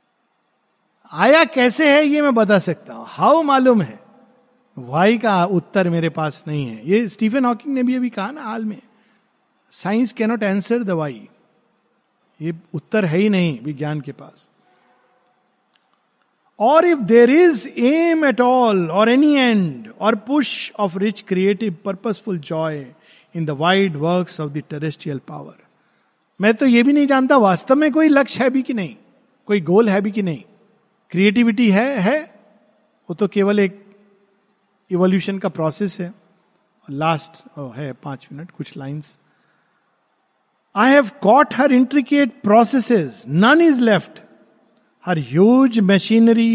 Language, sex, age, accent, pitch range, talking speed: Hindi, male, 50-69, native, 175-235 Hz, 145 wpm